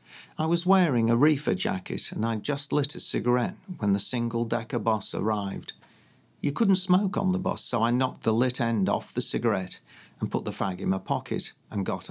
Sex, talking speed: male, 205 wpm